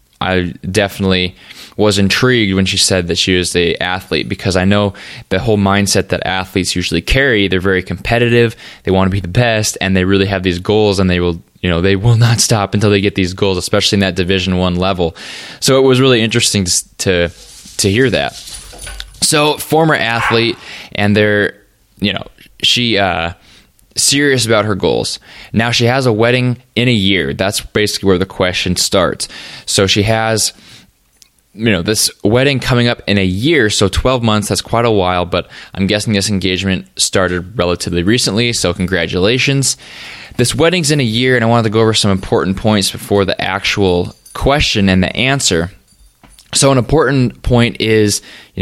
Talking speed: 185 wpm